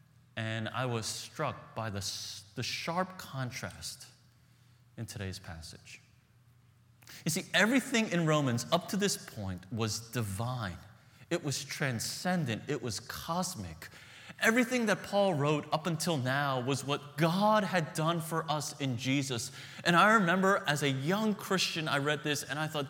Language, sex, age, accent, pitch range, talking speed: English, male, 30-49, American, 120-180 Hz, 150 wpm